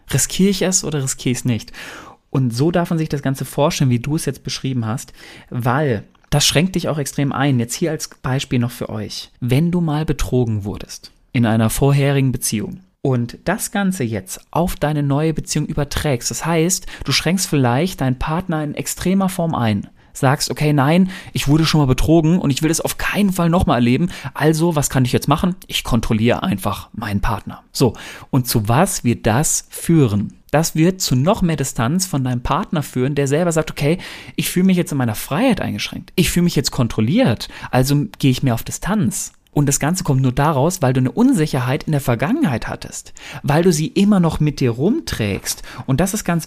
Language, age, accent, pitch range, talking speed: German, 40-59, German, 125-165 Hz, 205 wpm